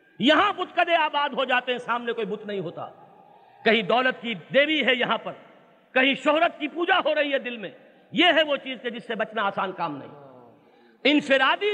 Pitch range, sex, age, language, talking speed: 220-310 Hz, male, 50-69, Urdu, 205 wpm